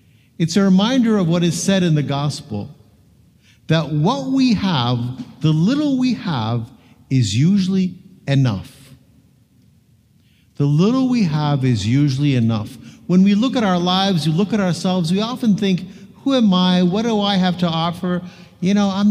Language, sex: English, male